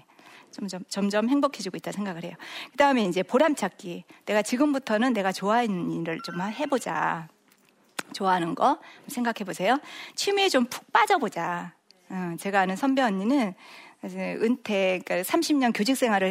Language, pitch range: Korean, 185-270 Hz